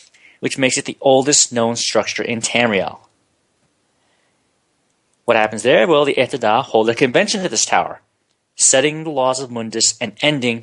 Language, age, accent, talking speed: English, 30-49, American, 160 wpm